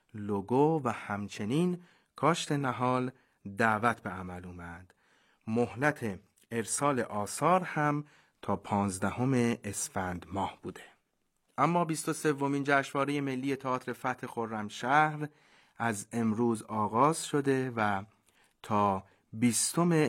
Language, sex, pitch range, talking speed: Persian, male, 105-140 Hz, 105 wpm